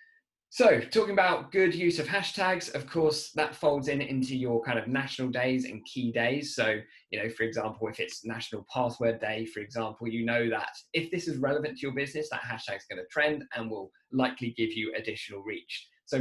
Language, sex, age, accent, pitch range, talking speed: English, male, 20-39, British, 115-150 Hz, 210 wpm